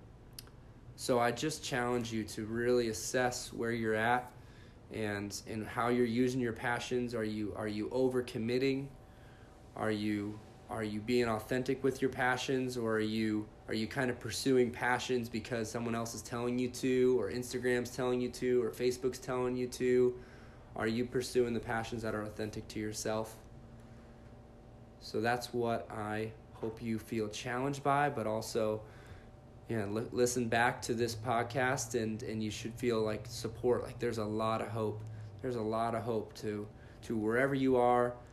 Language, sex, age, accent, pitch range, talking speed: English, male, 20-39, American, 110-125 Hz, 170 wpm